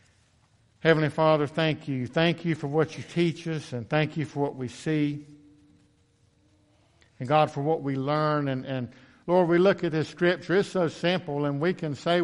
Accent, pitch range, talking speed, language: American, 130-155 Hz, 190 wpm, English